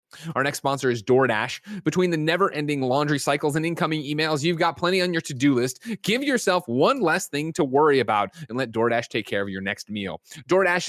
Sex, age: male, 30-49